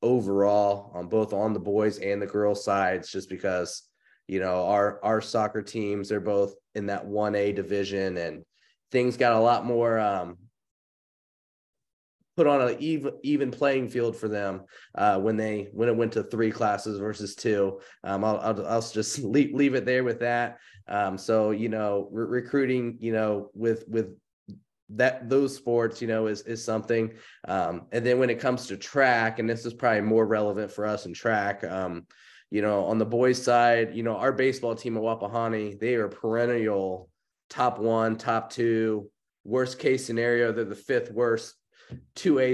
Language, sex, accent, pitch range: English, male, American, 105-120 Hz